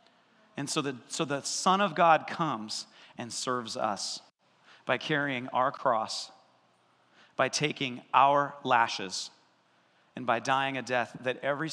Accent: American